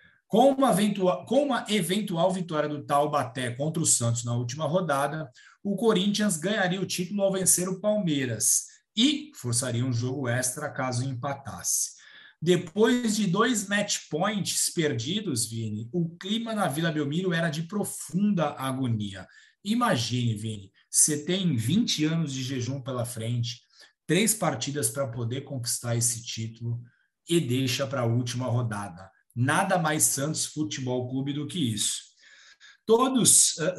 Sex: male